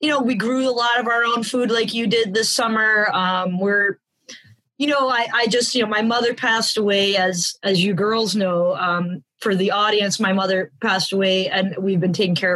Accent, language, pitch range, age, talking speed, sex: American, English, 190-250 Hz, 20-39, 220 wpm, female